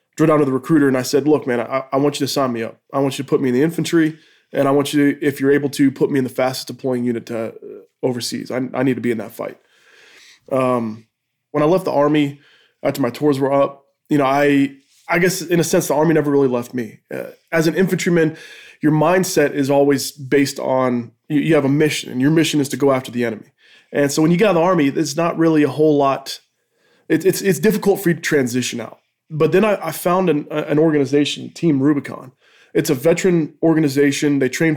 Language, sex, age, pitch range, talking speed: English, male, 20-39, 130-155 Hz, 245 wpm